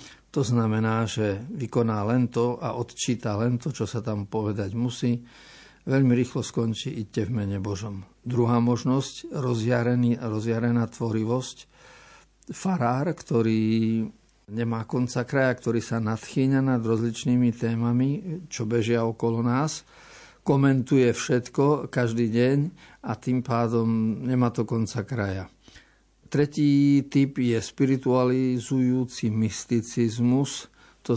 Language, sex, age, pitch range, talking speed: Slovak, male, 50-69, 115-135 Hz, 110 wpm